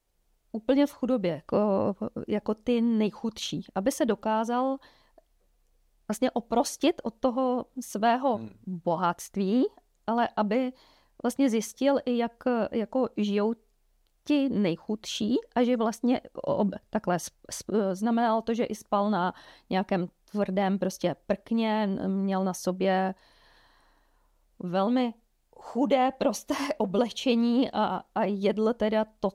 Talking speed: 100 wpm